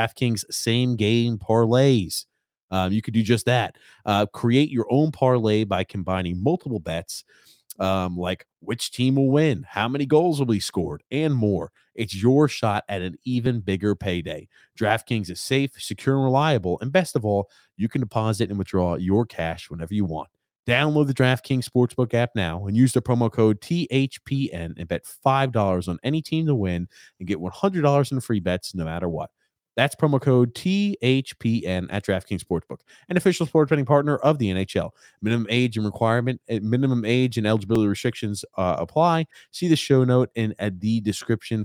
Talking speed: 175 wpm